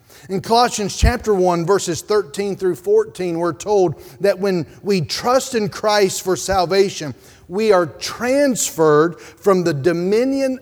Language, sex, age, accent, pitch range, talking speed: English, male, 40-59, American, 170-220 Hz, 135 wpm